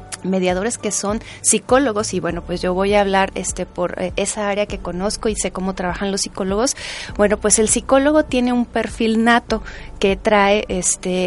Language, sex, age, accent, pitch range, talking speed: Spanish, female, 30-49, Mexican, 200-235 Hz, 185 wpm